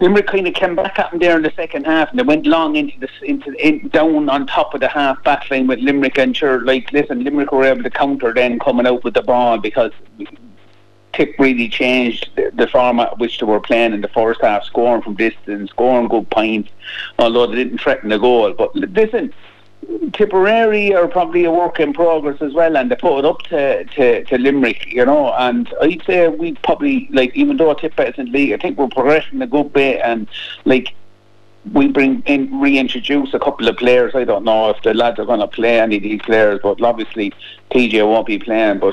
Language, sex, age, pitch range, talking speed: English, male, 50-69, 115-170 Hz, 220 wpm